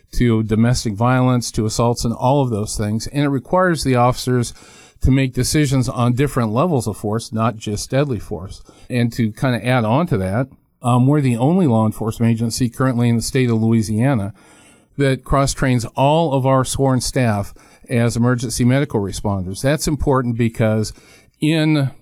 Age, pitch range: 50-69, 115-140 Hz